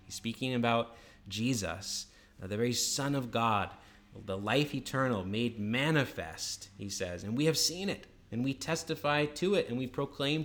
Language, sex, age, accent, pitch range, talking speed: English, male, 20-39, American, 100-135 Hz, 160 wpm